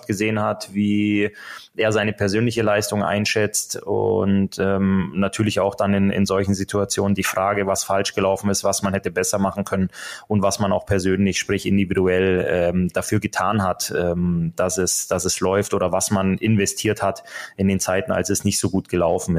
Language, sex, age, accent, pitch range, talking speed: German, male, 20-39, German, 95-105 Hz, 185 wpm